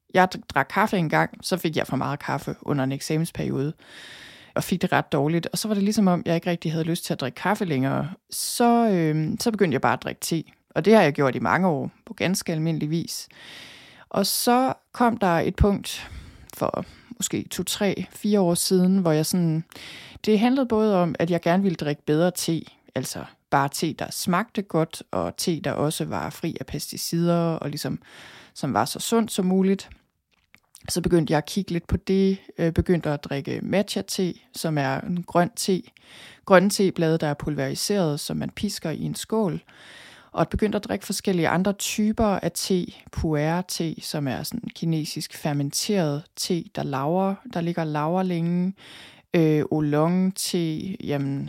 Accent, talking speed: native, 185 wpm